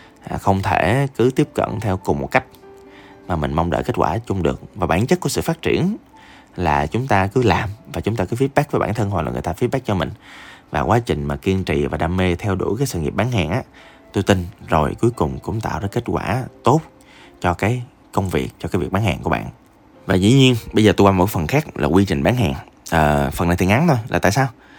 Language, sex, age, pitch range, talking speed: Vietnamese, male, 20-39, 85-120 Hz, 260 wpm